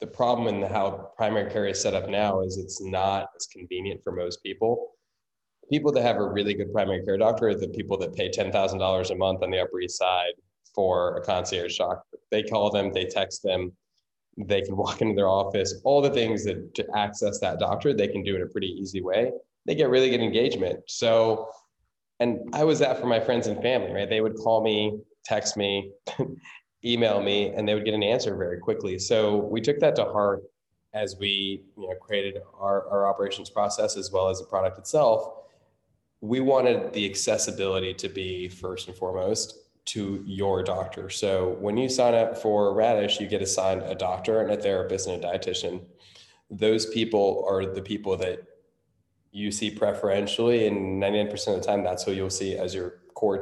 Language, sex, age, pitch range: English, male, 20-39, 95-115 Hz